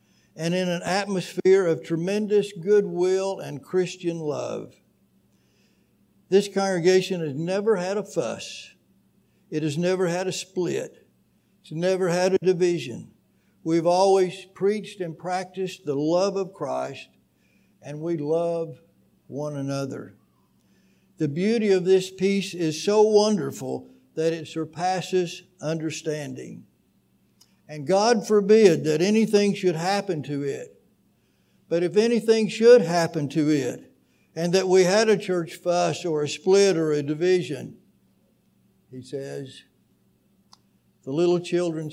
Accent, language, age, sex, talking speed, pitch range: American, English, 60-79, male, 125 wpm, 145-185 Hz